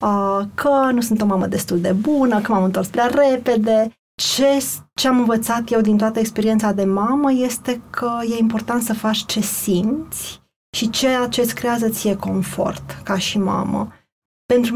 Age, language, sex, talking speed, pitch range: 20-39, Romanian, female, 170 wpm, 200-235 Hz